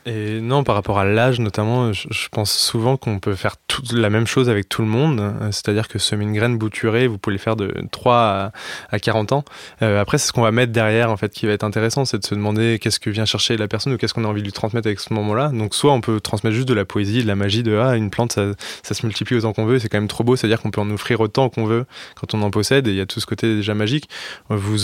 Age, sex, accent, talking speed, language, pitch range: 20-39, male, French, 290 wpm, French, 105-115 Hz